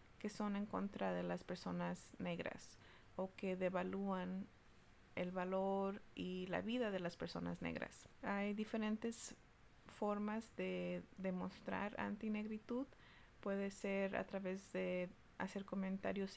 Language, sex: English, female